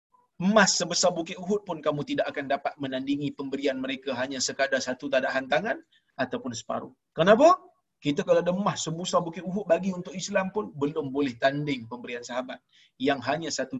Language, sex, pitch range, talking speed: Malayalam, male, 140-205 Hz, 165 wpm